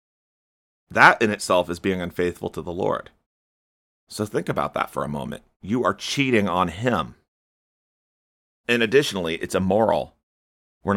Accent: American